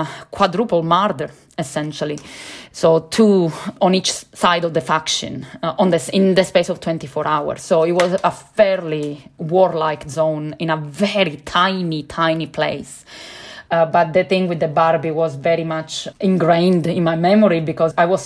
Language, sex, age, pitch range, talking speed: English, female, 20-39, 155-170 Hz, 165 wpm